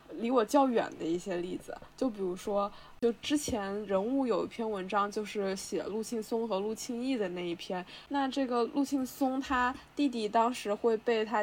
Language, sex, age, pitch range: Chinese, female, 10-29, 205-255 Hz